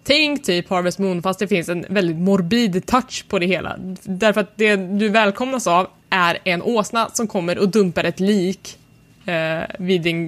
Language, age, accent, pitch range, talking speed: Swedish, 20-39, native, 185-225 Hz, 185 wpm